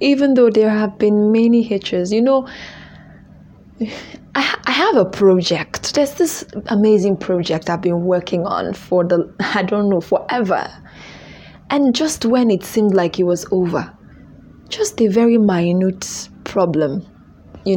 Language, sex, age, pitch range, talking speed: English, female, 20-39, 180-230 Hz, 145 wpm